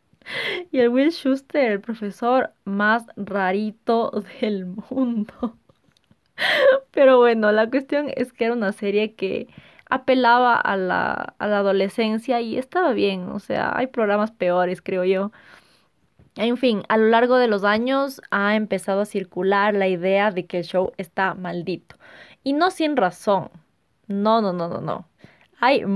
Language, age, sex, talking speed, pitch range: Spanish, 20-39, female, 150 wpm, 185-250 Hz